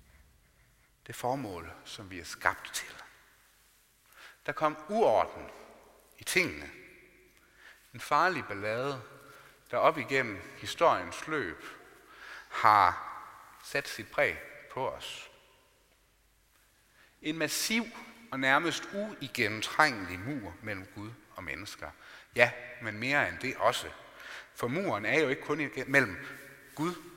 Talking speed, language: 110 wpm, Danish